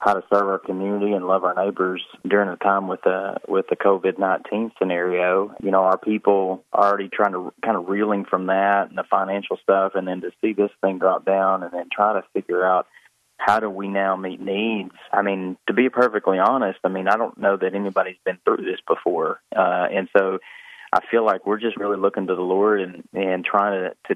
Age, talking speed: 30-49, 220 wpm